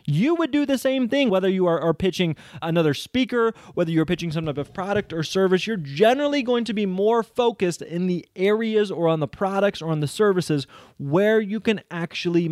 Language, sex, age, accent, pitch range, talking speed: English, male, 30-49, American, 145-185 Hz, 210 wpm